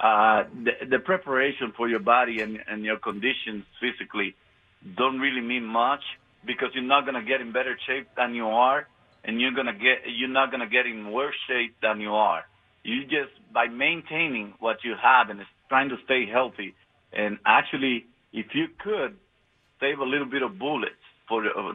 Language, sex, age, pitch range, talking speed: English, male, 50-69, 115-140 Hz, 190 wpm